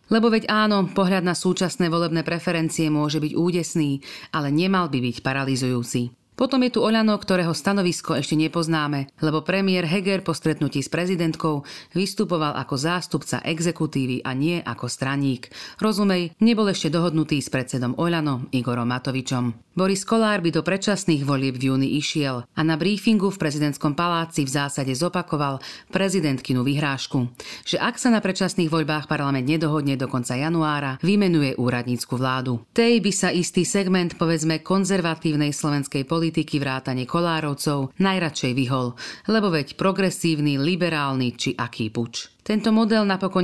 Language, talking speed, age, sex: Slovak, 145 wpm, 40-59, female